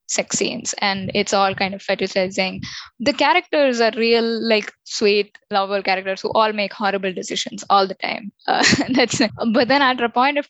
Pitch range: 190-230 Hz